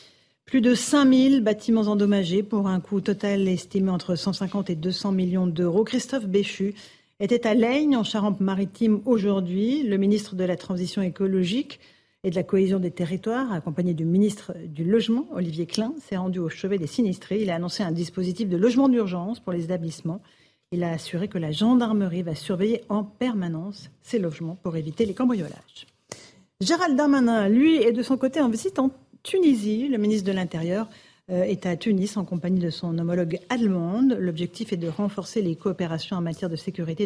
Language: French